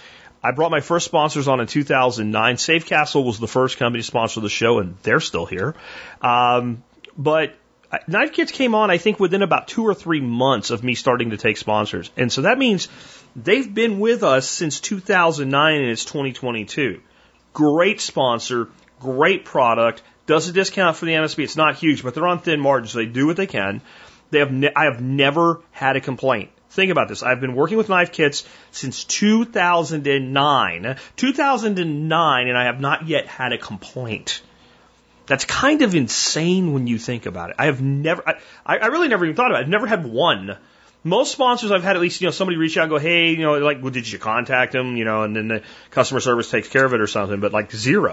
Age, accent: 30-49, American